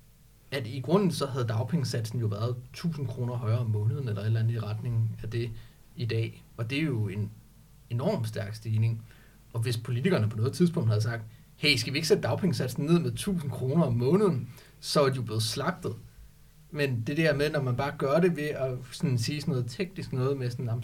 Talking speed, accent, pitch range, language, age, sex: 215 wpm, native, 115-145 Hz, Danish, 30-49, male